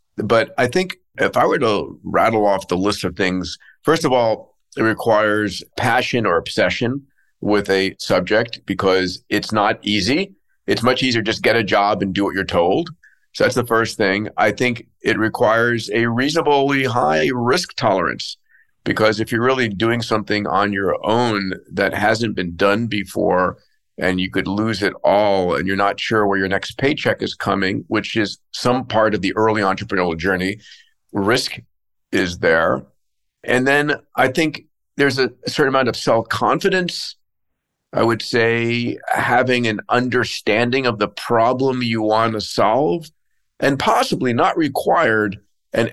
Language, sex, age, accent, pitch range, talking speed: English, male, 50-69, American, 100-125 Hz, 160 wpm